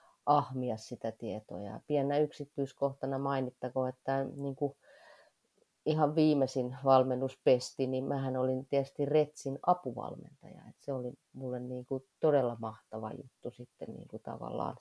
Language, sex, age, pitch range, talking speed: Finnish, female, 30-49, 120-140 Hz, 115 wpm